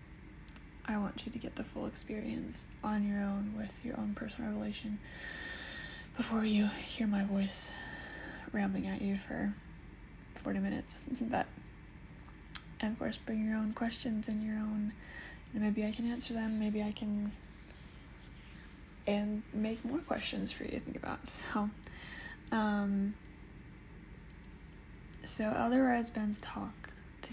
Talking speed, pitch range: 145 wpm, 195-225 Hz